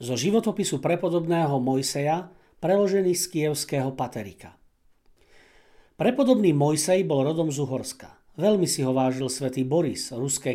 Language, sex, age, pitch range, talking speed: Slovak, male, 50-69, 130-170 Hz, 120 wpm